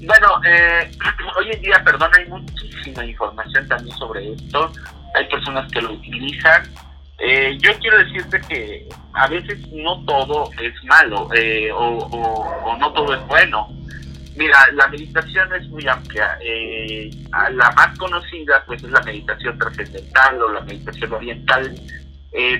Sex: male